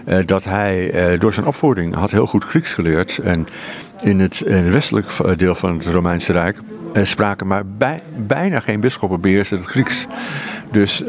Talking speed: 150 wpm